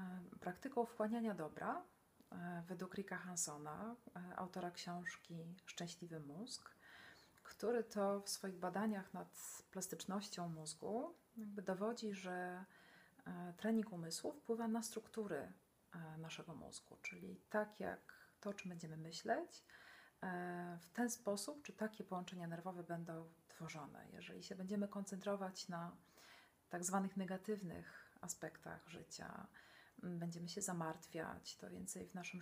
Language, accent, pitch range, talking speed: Polish, native, 175-215 Hz, 115 wpm